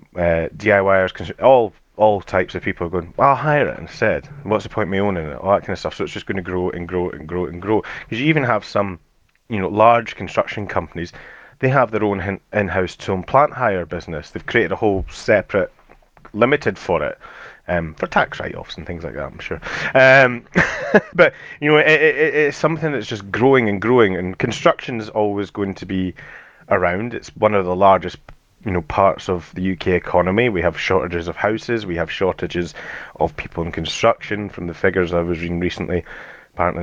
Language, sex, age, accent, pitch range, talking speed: English, male, 30-49, British, 90-110 Hz, 210 wpm